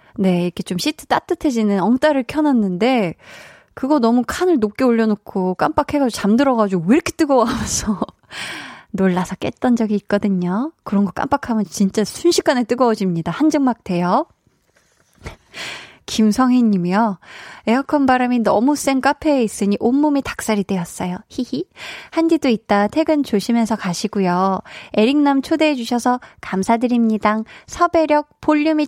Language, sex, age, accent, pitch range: Korean, female, 20-39, native, 195-275 Hz